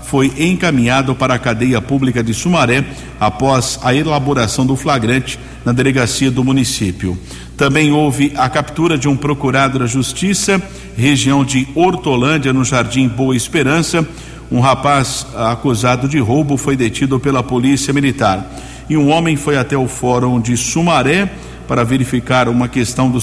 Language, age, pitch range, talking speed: Portuguese, 50-69, 125-145 Hz, 145 wpm